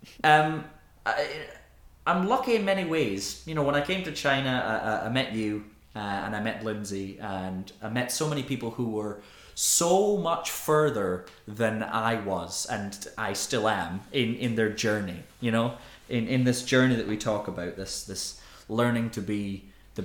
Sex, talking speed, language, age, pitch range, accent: male, 185 wpm, English, 20-39, 100-135 Hz, British